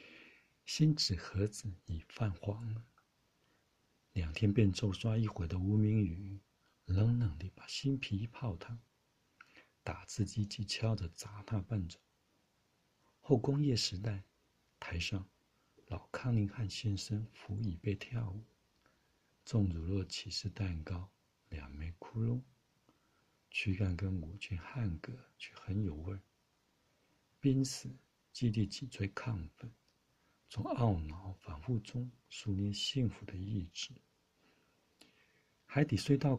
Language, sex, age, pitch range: Chinese, male, 60-79, 95-120 Hz